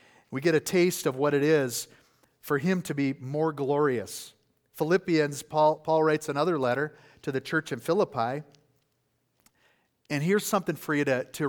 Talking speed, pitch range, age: 165 wpm, 135-190 Hz, 40-59